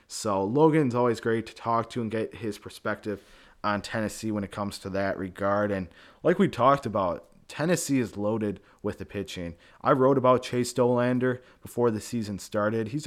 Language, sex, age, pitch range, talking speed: English, male, 20-39, 100-120 Hz, 185 wpm